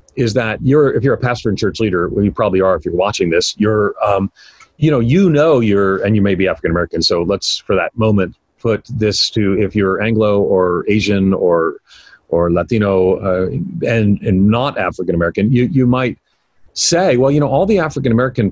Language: English